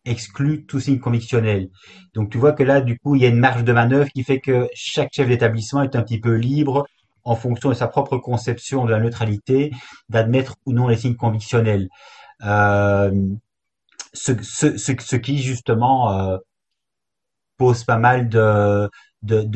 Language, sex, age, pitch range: French, male, 30-49, 110-130 Hz